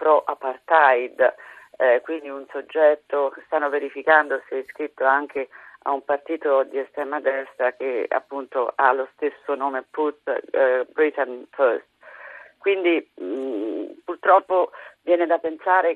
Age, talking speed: 50-69, 130 wpm